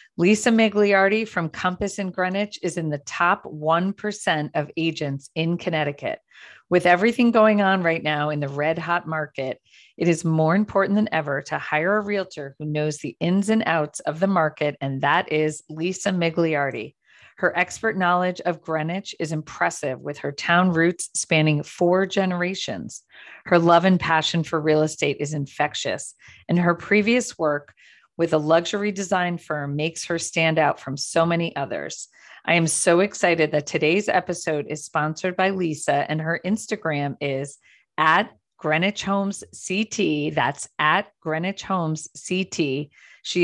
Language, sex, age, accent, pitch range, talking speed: English, female, 40-59, American, 155-190 Hz, 160 wpm